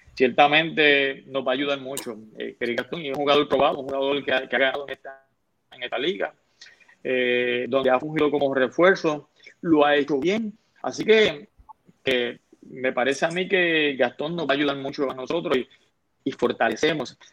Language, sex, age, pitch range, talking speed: Spanish, male, 30-49, 125-145 Hz, 185 wpm